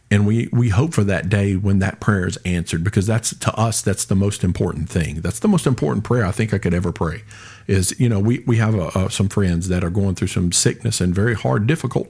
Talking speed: 260 wpm